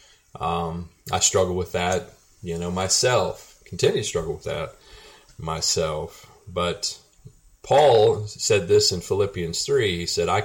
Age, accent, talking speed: 30-49, American, 140 wpm